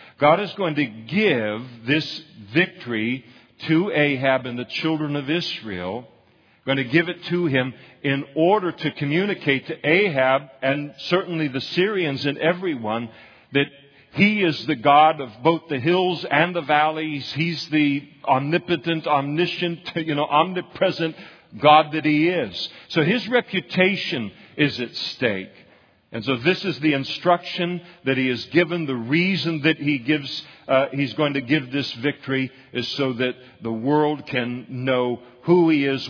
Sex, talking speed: male, 155 wpm